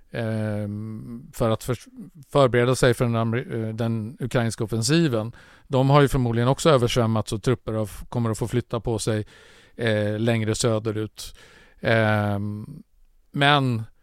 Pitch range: 115-135 Hz